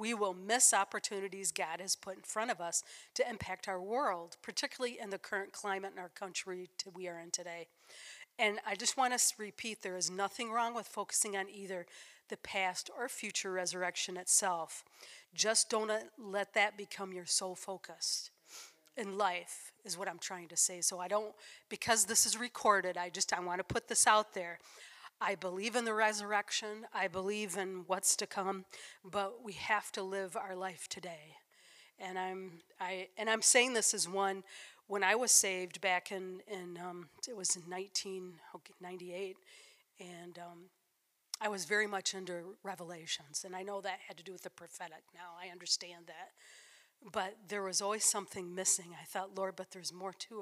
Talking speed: 185 wpm